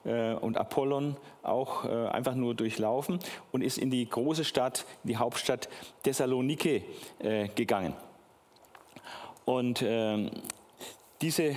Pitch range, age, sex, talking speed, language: 115-145 Hz, 40-59, male, 95 wpm, German